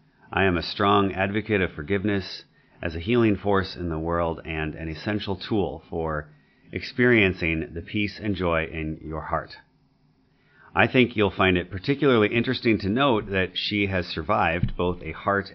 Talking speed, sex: 165 wpm, male